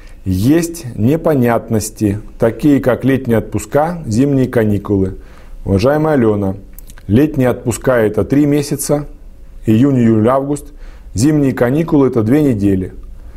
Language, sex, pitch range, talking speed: Russian, male, 95-125 Hz, 95 wpm